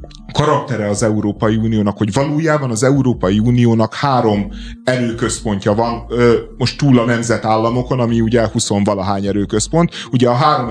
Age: 30-49